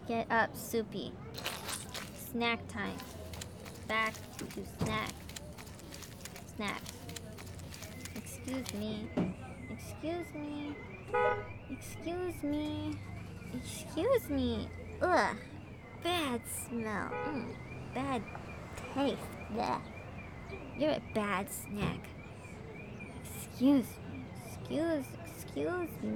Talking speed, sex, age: 65 wpm, male, 20-39